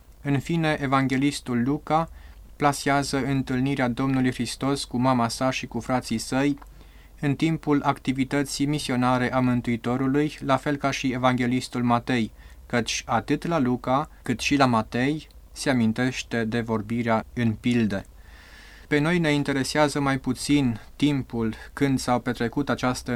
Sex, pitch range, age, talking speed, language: male, 115-140 Hz, 20-39, 135 wpm, Romanian